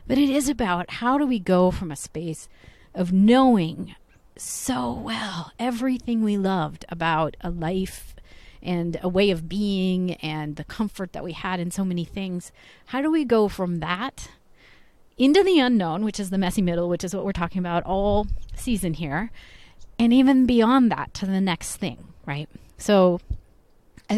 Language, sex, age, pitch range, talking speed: English, female, 30-49, 165-215 Hz, 175 wpm